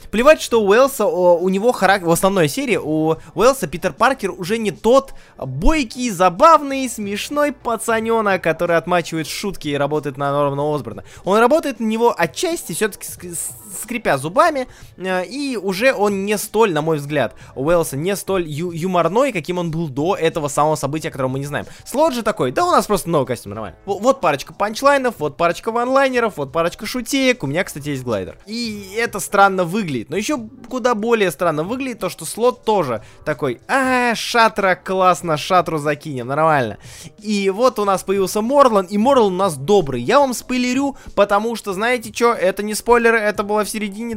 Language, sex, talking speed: Russian, male, 180 wpm